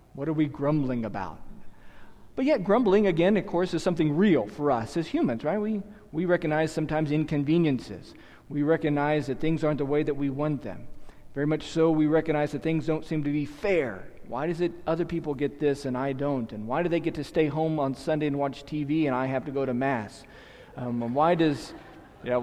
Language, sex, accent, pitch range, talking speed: English, male, American, 135-165 Hz, 215 wpm